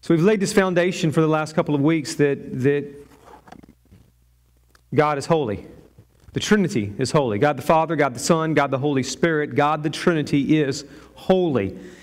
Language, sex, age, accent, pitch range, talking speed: English, male, 40-59, American, 150-195 Hz, 175 wpm